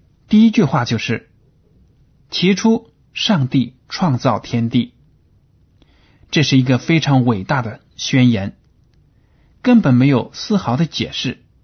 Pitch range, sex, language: 120-155 Hz, male, Chinese